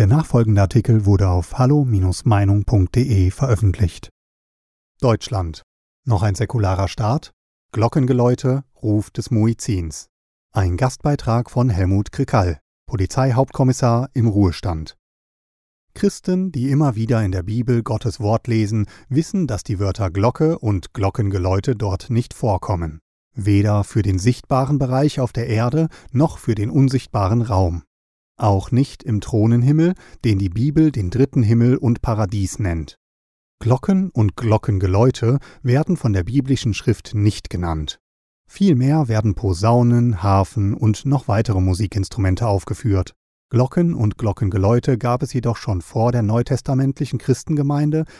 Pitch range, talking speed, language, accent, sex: 100-130 Hz, 125 wpm, German, German, male